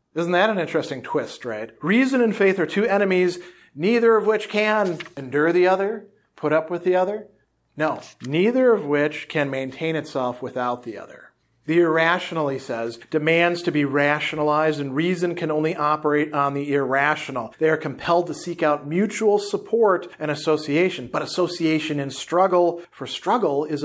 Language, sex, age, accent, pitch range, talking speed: English, male, 40-59, American, 150-190 Hz, 170 wpm